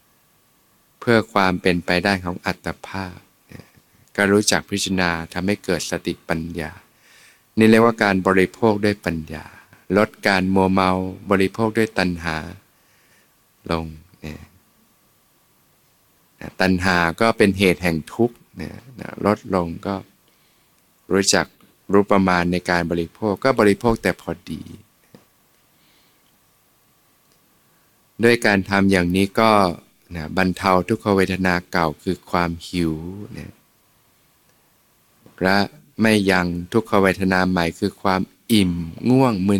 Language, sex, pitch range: Thai, male, 90-100 Hz